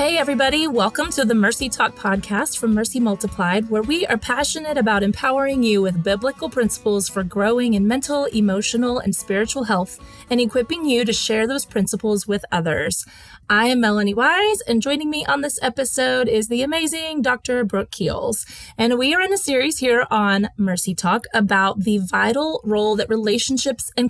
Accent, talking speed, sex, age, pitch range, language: American, 175 wpm, female, 30-49, 200-260 Hz, English